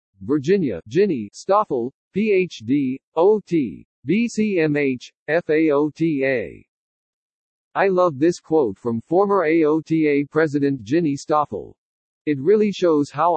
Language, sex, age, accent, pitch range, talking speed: English, male, 50-69, American, 135-175 Hz, 95 wpm